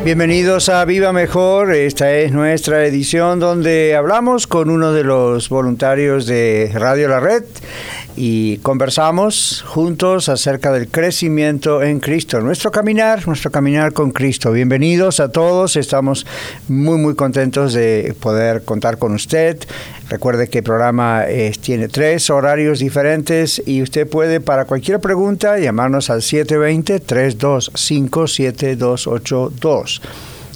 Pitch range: 125-155 Hz